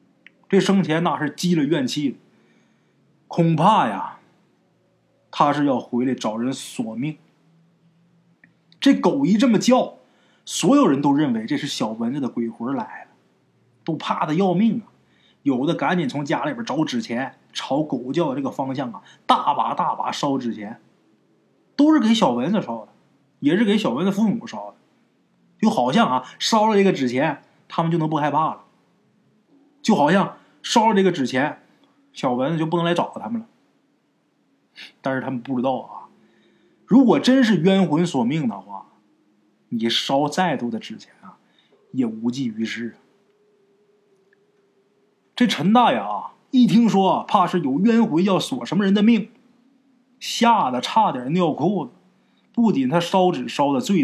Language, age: Chinese, 20-39